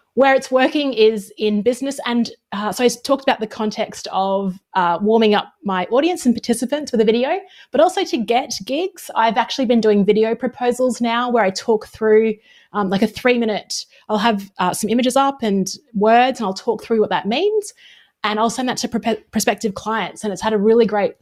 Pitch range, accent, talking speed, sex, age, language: 205-245 Hz, Australian, 210 wpm, female, 20-39, English